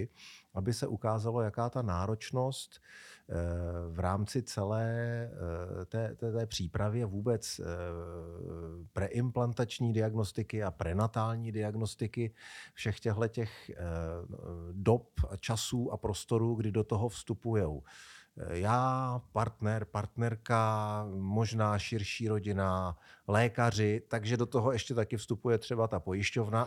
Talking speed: 100 wpm